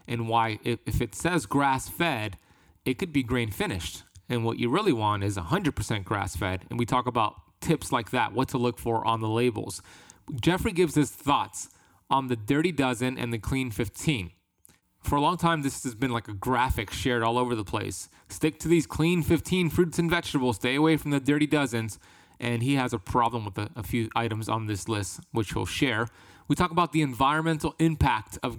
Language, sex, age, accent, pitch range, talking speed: English, male, 30-49, American, 110-150 Hz, 200 wpm